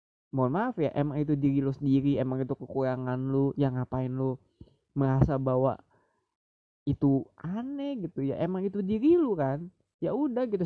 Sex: male